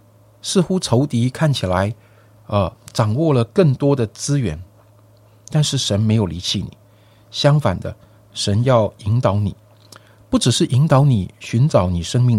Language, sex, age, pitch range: Chinese, male, 50-69, 100-120 Hz